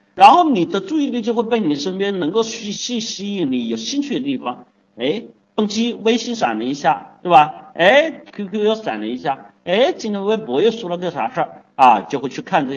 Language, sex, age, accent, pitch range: Chinese, male, 50-69, native, 175-260 Hz